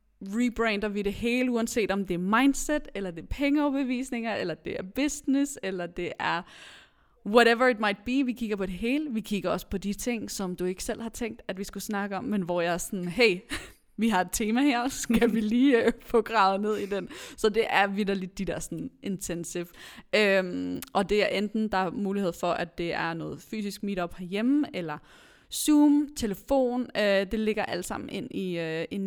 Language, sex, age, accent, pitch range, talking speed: Danish, female, 20-39, native, 185-235 Hz, 210 wpm